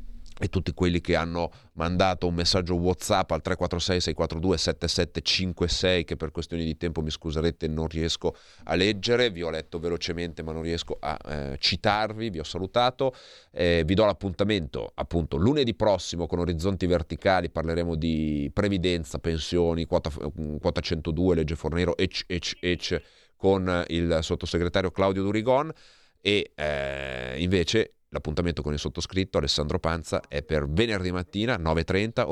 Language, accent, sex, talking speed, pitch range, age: Italian, native, male, 140 wpm, 80-95 Hz, 30-49